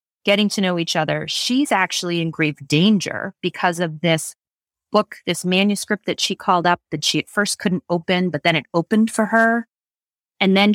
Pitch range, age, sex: 165-200 Hz, 30-49, female